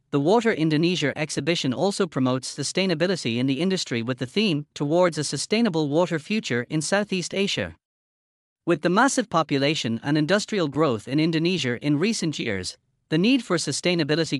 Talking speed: 155 wpm